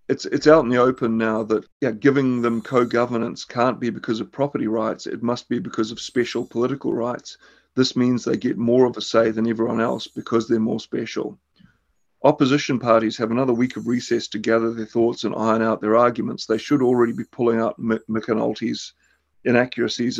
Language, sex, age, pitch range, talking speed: English, male, 40-59, 115-130 Hz, 195 wpm